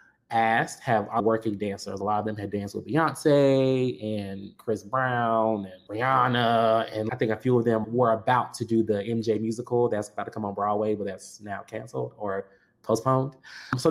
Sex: male